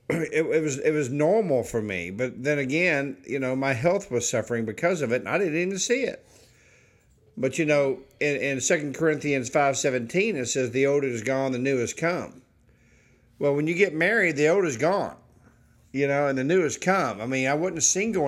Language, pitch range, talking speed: English, 120-165 Hz, 215 wpm